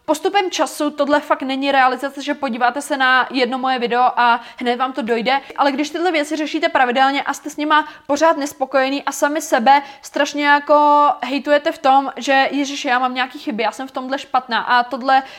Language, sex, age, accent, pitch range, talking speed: Czech, female, 20-39, native, 255-295 Hz, 200 wpm